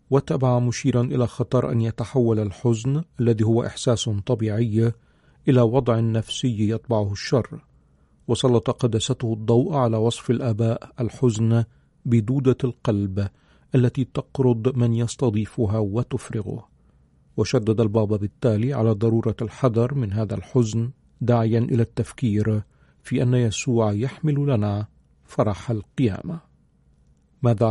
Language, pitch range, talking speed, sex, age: Arabic, 110-130 Hz, 110 wpm, male, 40-59